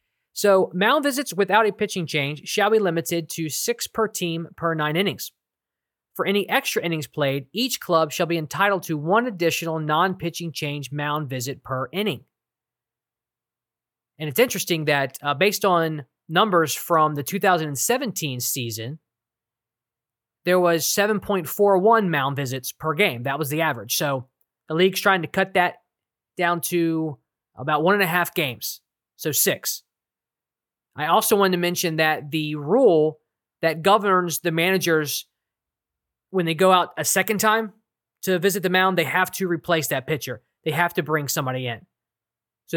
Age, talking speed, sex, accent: 20-39, 155 wpm, male, American